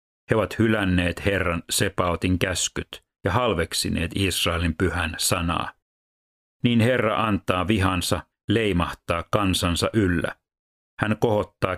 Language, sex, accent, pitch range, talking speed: Finnish, male, native, 85-105 Hz, 100 wpm